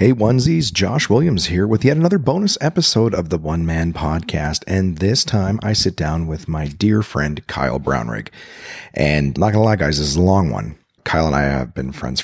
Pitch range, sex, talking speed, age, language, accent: 75-105 Hz, male, 210 wpm, 40-59, English, American